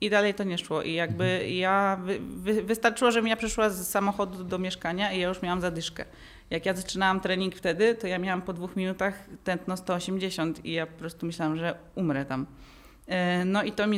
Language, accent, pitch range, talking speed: Polish, native, 165-190 Hz, 195 wpm